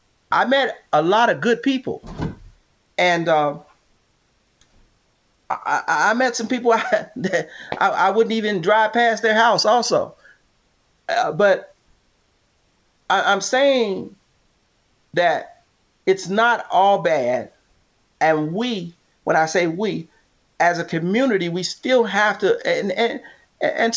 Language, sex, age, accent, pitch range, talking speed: English, male, 40-59, American, 210-260 Hz, 130 wpm